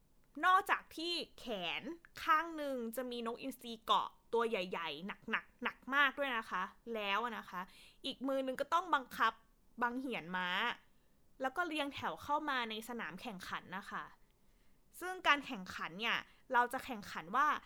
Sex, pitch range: female, 225-295 Hz